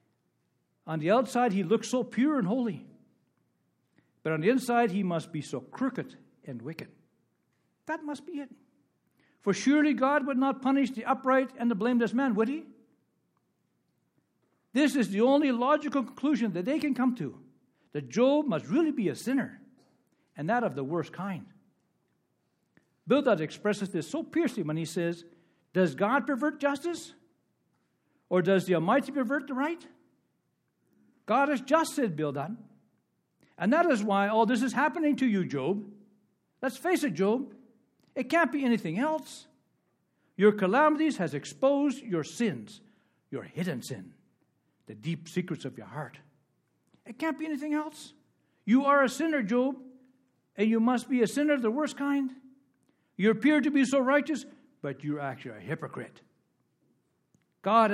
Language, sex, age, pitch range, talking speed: English, male, 60-79, 185-280 Hz, 160 wpm